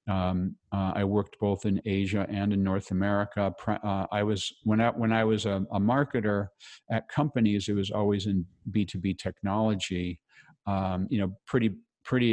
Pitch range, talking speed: 95-115 Hz, 180 wpm